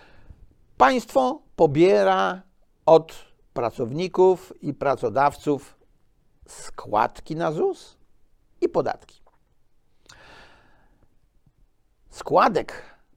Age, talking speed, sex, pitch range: 60-79, 55 wpm, male, 115-160 Hz